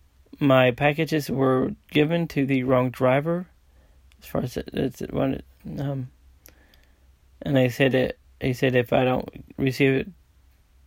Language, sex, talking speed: English, male, 145 wpm